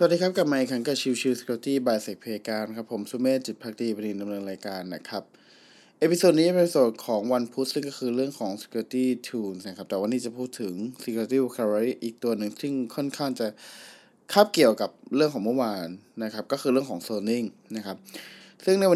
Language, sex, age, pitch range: Thai, male, 20-39, 115-160 Hz